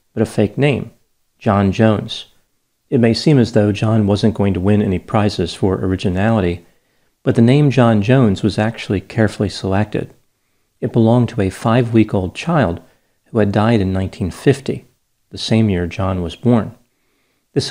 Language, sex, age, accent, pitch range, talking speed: English, male, 40-59, American, 100-120 Hz, 160 wpm